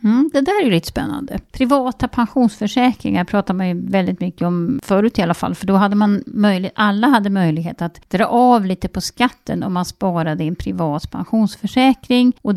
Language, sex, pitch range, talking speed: Swedish, female, 175-225 Hz, 190 wpm